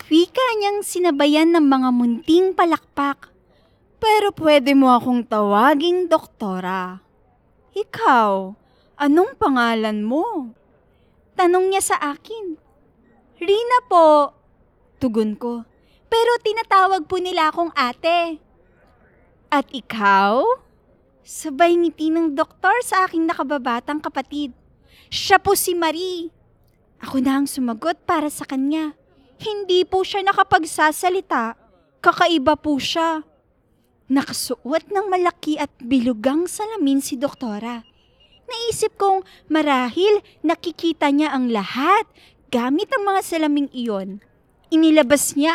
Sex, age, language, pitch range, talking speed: female, 20-39, English, 270-360 Hz, 110 wpm